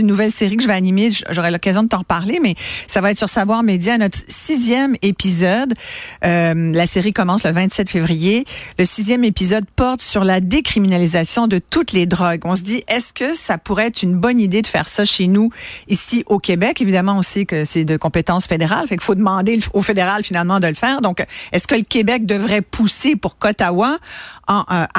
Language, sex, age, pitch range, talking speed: French, female, 50-69, 180-225 Hz, 210 wpm